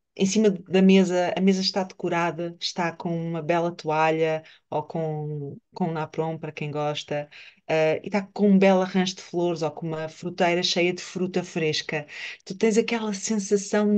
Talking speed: 180 wpm